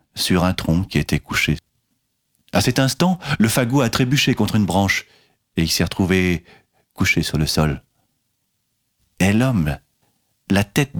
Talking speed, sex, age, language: 155 wpm, male, 40-59, French